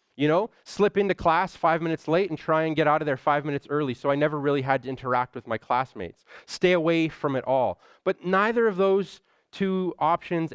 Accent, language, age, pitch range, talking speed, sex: American, English, 30-49, 130-170 Hz, 220 wpm, male